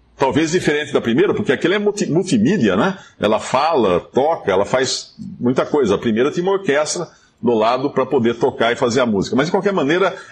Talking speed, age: 205 wpm, 50-69